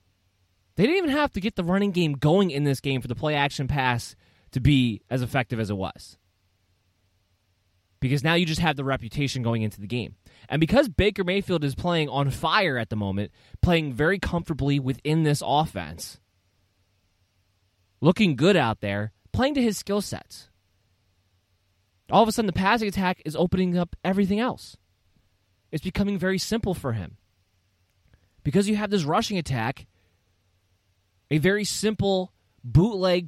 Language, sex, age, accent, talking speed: English, male, 20-39, American, 160 wpm